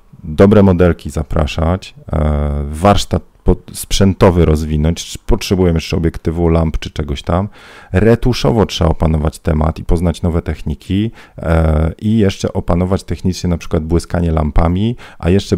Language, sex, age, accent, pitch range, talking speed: Polish, male, 40-59, native, 85-100 Hz, 125 wpm